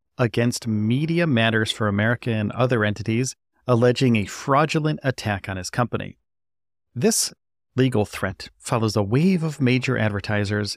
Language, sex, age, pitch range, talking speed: English, male, 40-59, 105-125 Hz, 135 wpm